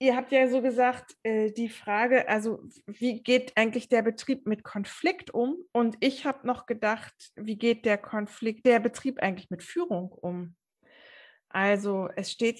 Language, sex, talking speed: German, female, 165 wpm